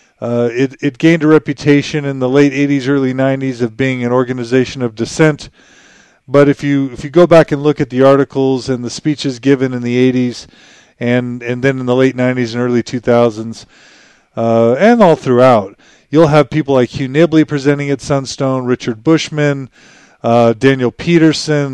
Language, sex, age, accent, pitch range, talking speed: English, male, 40-59, American, 120-145 Hz, 180 wpm